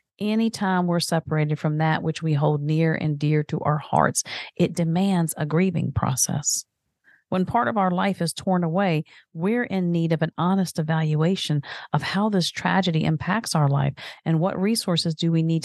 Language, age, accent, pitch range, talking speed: English, 40-59, American, 150-185 Hz, 180 wpm